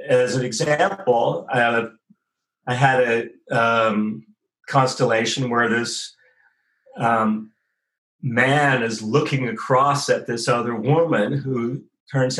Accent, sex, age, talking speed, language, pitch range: American, male, 40-59, 105 wpm, English, 115-150 Hz